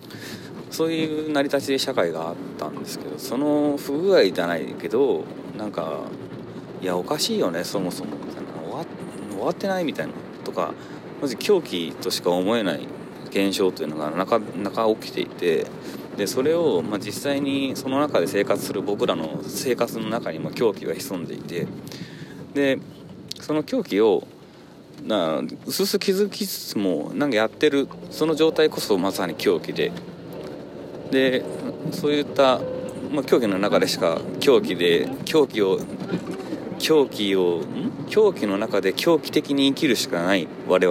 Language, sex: Japanese, male